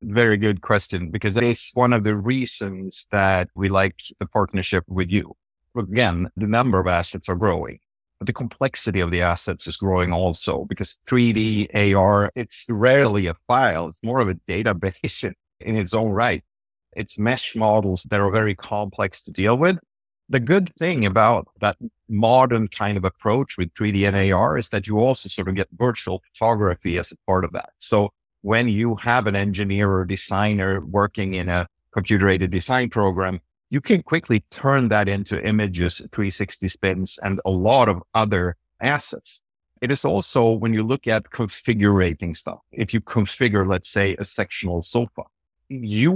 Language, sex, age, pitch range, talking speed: English, male, 50-69, 95-115 Hz, 175 wpm